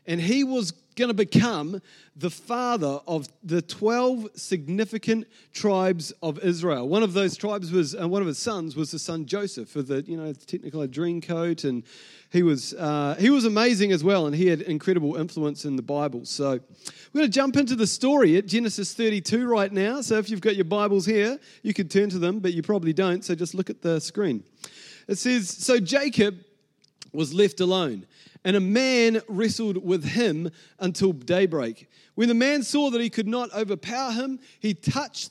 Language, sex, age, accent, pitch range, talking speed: English, male, 30-49, Australian, 165-220 Hz, 195 wpm